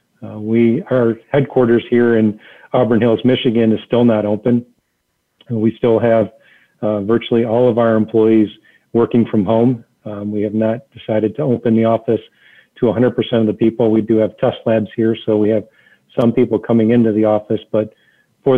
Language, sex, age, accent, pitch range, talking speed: English, male, 40-59, American, 110-120 Hz, 180 wpm